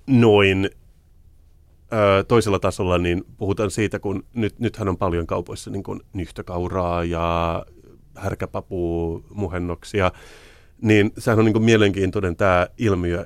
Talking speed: 115 wpm